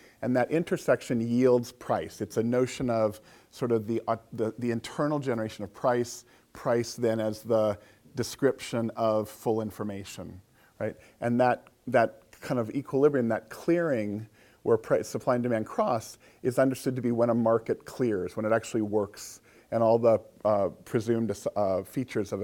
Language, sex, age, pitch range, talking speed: English, male, 40-59, 110-130 Hz, 165 wpm